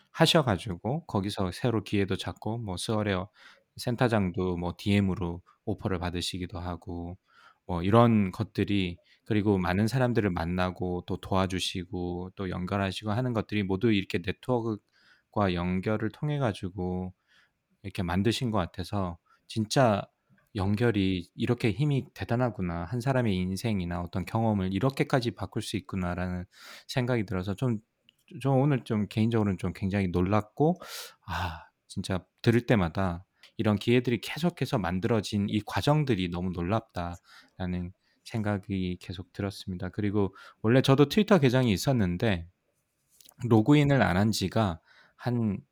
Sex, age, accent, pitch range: male, 20-39, native, 95-120 Hz